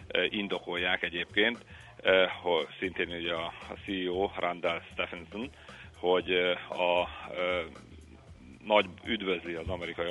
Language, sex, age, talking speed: Hungarian, male, 40-59, 90 wpm